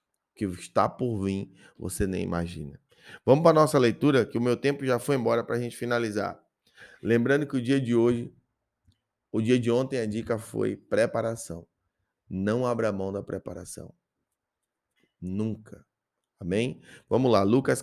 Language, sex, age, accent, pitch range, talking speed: Portuguese, male, 20-39, Brazilian, 110-140 Hz, 160 wpm